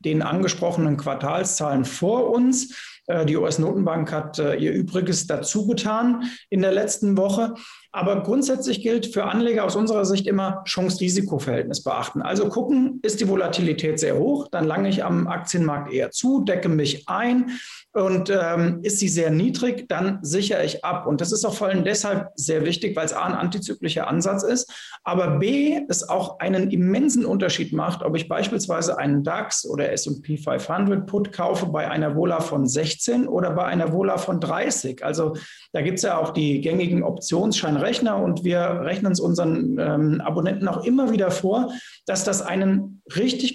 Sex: male